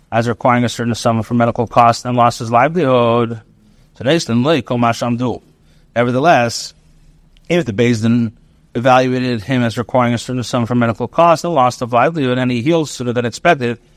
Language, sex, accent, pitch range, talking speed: English, male, American, 115-140 Hz, 160 wpm